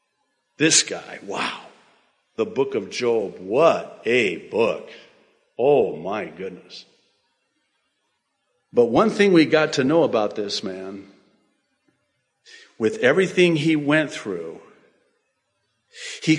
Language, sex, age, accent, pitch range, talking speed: English, male, 50-69, American, 110-175 Hz, 105 wpm